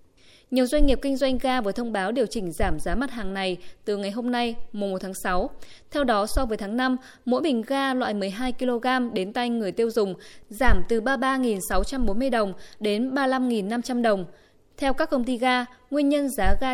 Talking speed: 200 wpm